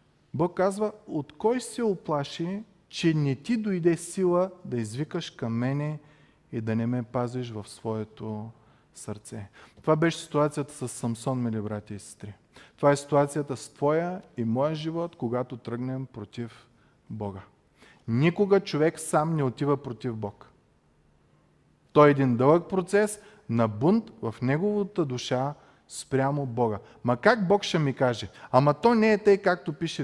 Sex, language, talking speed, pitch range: male, Bulgarian, 155 wpm, 125-190 Hz